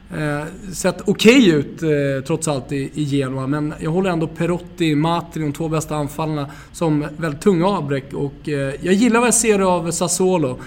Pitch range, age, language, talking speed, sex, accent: 145-185 Hz, 20-39, English, 190 wpm, male, Swedish